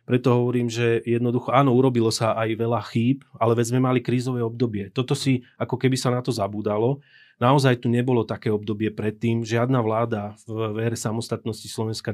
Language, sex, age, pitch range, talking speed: Slovak, male, 30-49, 110-120 Hz, 180 wpm